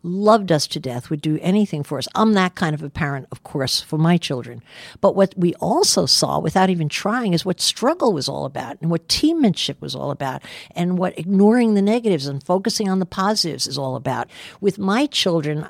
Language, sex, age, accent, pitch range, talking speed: English, female, 60-79, American, 145-190 Hz, 215 wpm